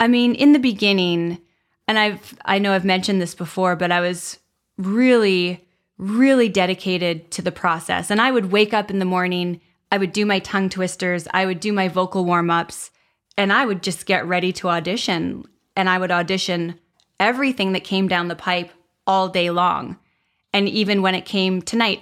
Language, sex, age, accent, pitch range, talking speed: English, female, 20-39, American, 180-210 Hz, 185 wpm